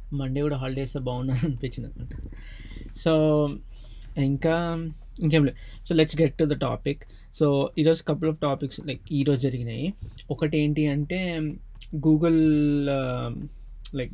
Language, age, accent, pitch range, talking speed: Telugu, 20-39, native, 130-160 Hz, 120 wpm